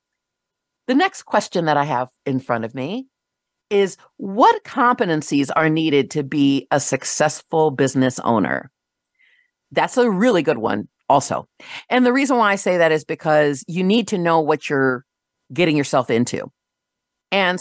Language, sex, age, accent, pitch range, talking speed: English, female, 40-59, American, 140-195 Hz, 155 wpm